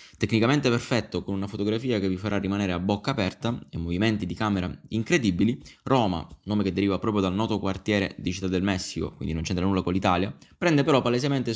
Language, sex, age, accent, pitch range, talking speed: Italian, male, 20-39, native, 90-115 Hz, 195 wpm